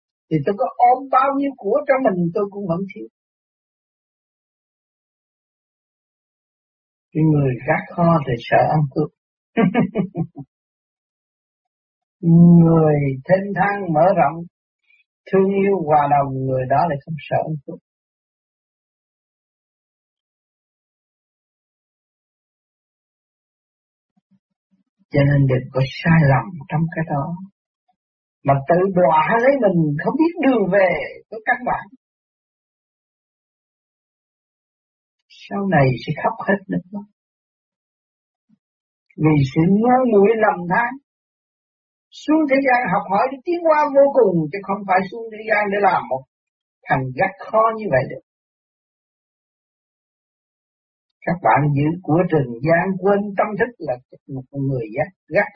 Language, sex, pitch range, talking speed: Vietnamese, male, 150-215 Hz, 115 wpm